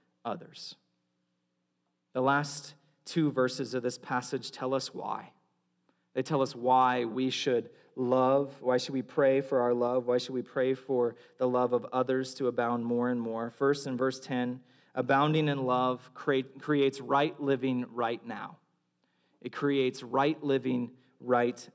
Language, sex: English, male